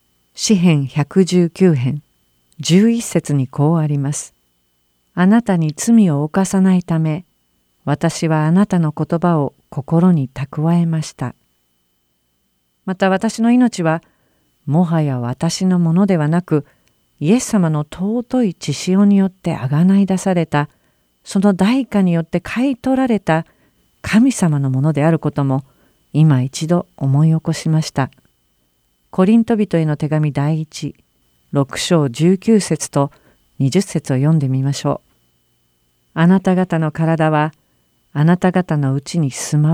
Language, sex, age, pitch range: Japanese, female, 50-69, 135-180 Hz